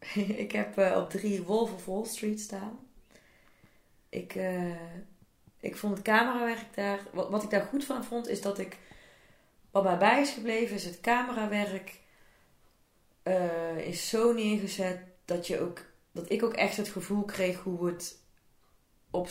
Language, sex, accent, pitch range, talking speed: Dutch, female, Dutch, 175-210 Hz, 160 wpm